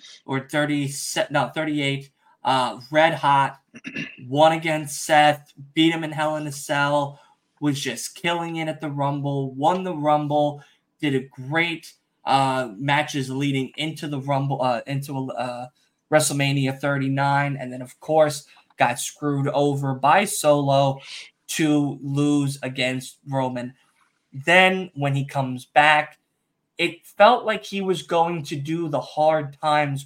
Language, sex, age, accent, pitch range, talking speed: English, male, 20-39, American, 135-155 Hz, 145 wpm